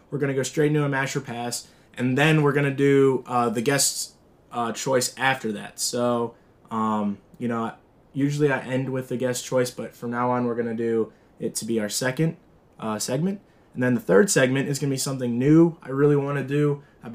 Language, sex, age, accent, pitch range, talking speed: English, male, 20-39, American, 120-140 Hz, 230 wpm